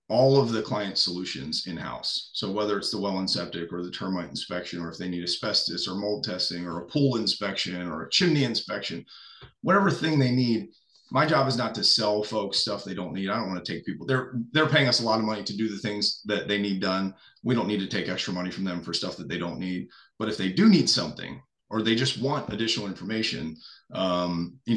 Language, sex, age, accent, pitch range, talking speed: English, male, 40-59, American, 95-130 Hz, 240 wpm